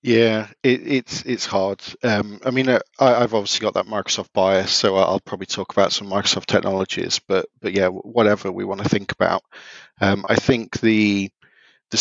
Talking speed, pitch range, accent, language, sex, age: 185 wpm, 100-110 Hz, British, English, male, 40-59